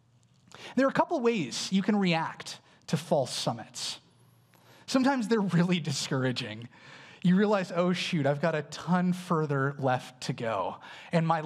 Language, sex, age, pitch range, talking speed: English, male, 30-49, 145-210 Hz, 150 wpm